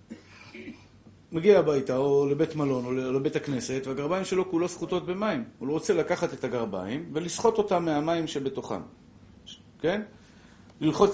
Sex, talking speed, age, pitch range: male, 135 wpm, 50-69, 125-170 Hz